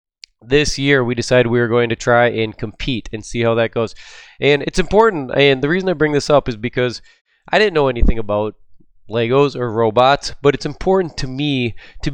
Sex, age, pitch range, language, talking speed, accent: male, 20-39, 115-135 Hz, English, 210 wpm, American